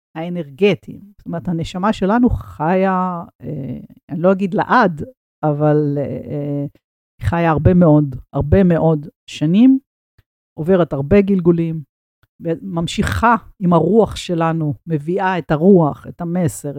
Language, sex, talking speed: Hebrew, female, 120 wpm